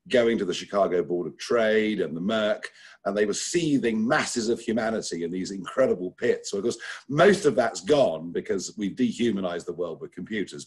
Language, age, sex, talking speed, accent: English, 50-69, male, 195 wpm, British